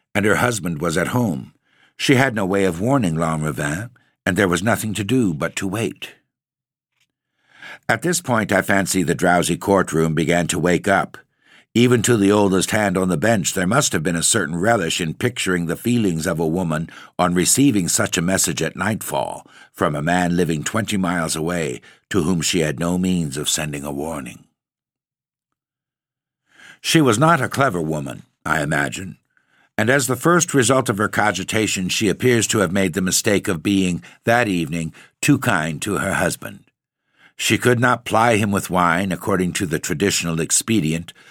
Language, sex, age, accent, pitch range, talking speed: English, male, 60-79, American, 85-120 Hz, 180 wpm